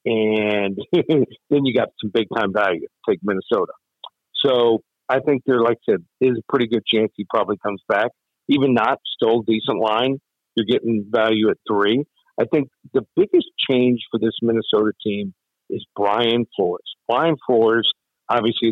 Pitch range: 110-125 Hz